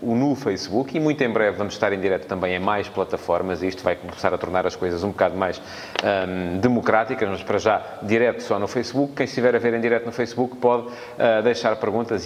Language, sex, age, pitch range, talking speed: Portuguese, male, 30-49, 105-140 Hz, 225 wpm